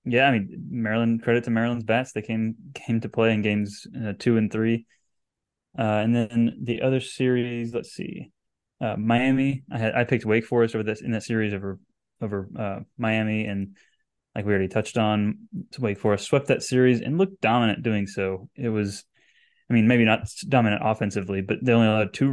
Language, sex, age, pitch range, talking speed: English, male, 10-29, 105-125 Hz, 195 wpm